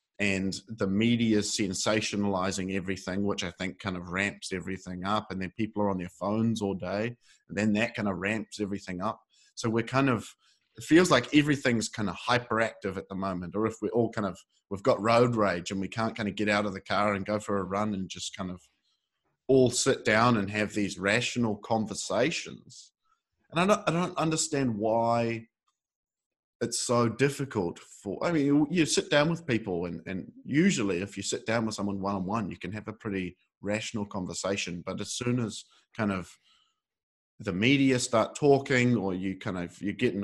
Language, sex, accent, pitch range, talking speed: English, male, Australian, 95-115 Hz, 200 wpm